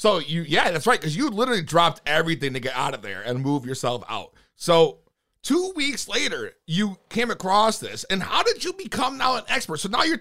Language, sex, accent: English, male, American